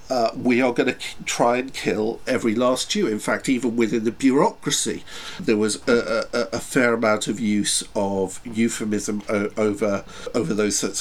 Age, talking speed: 50-69, 175 wpm